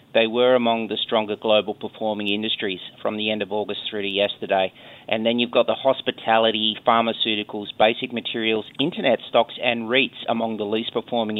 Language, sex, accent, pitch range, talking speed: English, male, Australian, 110-125 Hz, 175 wpm